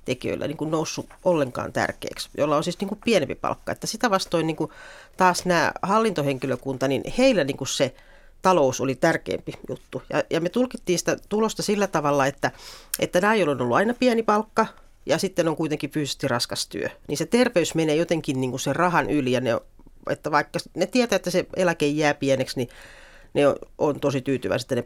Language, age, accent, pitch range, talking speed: Finnish, 40-59, native, 145-200 Hz, 205 wpm